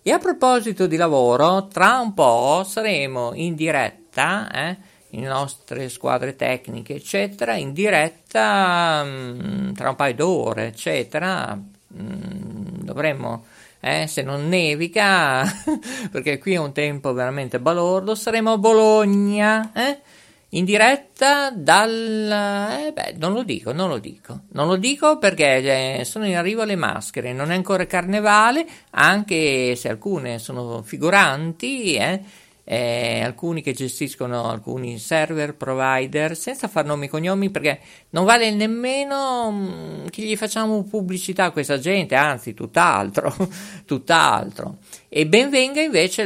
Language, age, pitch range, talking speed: Italian, 50-69, 140-210 Hz, 130 wpm